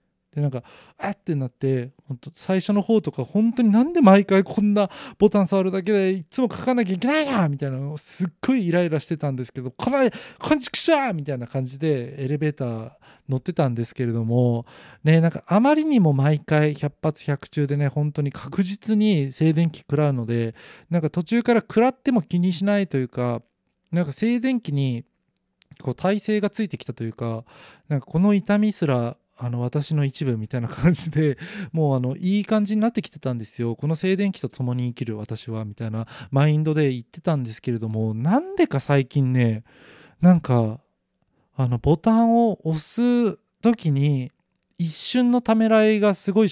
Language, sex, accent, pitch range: Japanese, male, native, 130-200 Hz